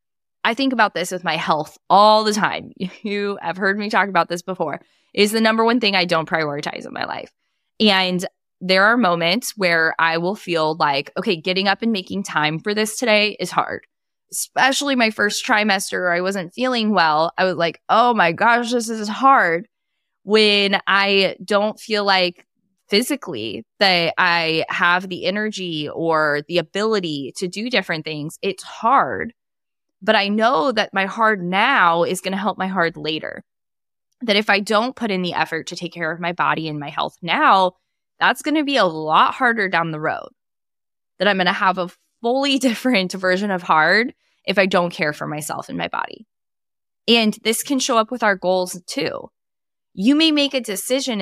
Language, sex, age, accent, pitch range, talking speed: English, female, 20-39, American, 175-225 Hz, 190 wpm